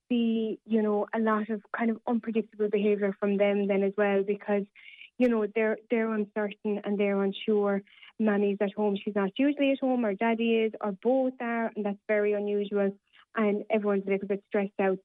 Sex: female